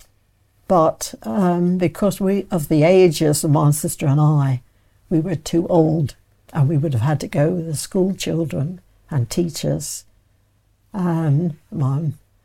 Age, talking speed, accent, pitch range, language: 60-79, 145 wpm, British, 110-180 Hz, English